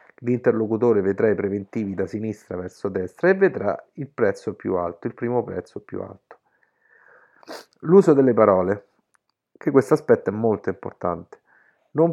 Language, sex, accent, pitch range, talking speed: Italian, male, native, 100-145 Hz, 145 wpm